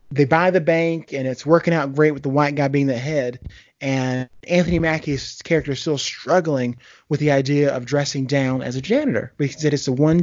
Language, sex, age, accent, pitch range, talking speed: English, male, 30-49, American, 125-155 Hz, 225 wpm